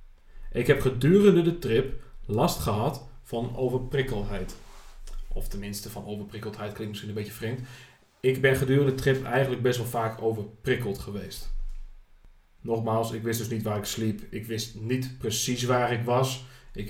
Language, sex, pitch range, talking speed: Dutch, male, 110-140 Hz, 160 wpm